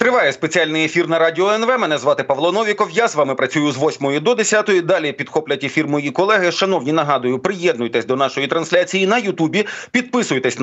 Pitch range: 150-195 Hz